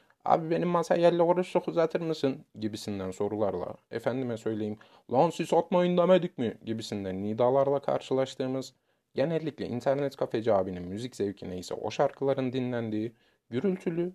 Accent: native